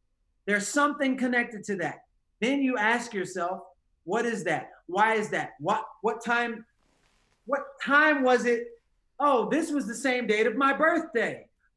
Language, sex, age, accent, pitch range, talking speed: English, male, 30-49, American, 195-255 Hz, 160 wpm